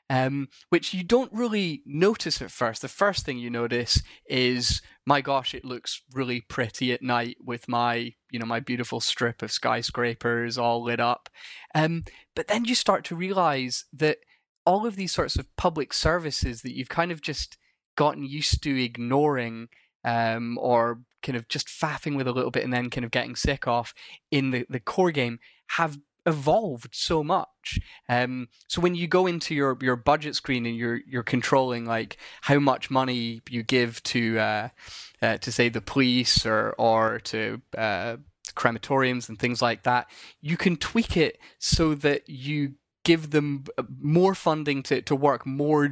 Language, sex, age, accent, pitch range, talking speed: English, male, 10-29, British, 120-150 Hz, 175 wpm